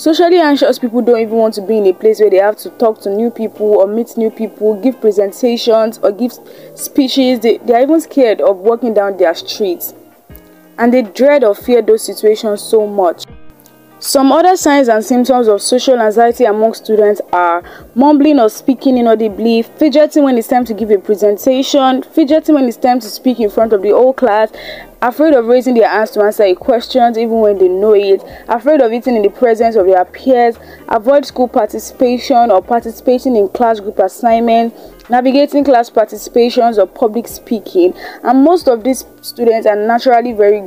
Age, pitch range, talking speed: 20-39, 210-260 Hz, 190 wpm